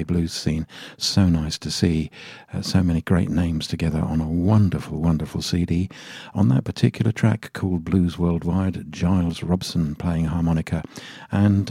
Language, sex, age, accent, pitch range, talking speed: English, male, 50-69, British, 80-95 Hz, 150 wpm